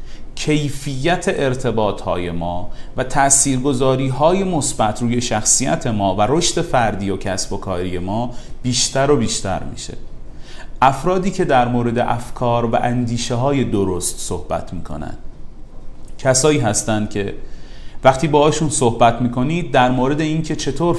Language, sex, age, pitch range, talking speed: Persian, male, 30-49, 100-140 Hz, 130 wpm